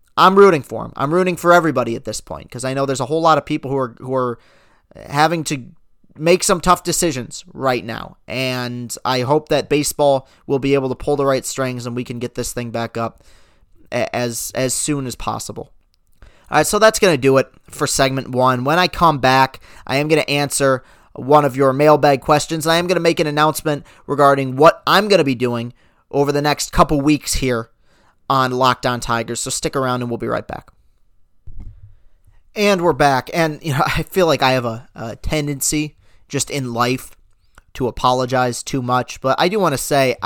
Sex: male